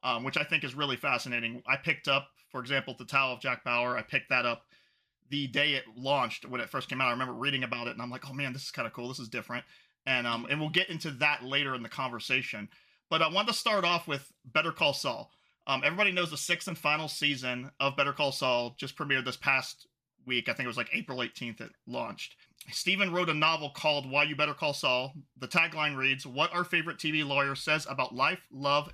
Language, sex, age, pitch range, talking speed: English, male, 30-49, 130-155 Hz, 245 wpm